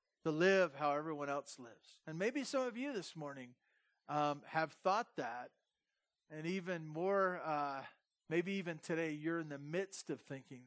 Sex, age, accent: male, 40-59, American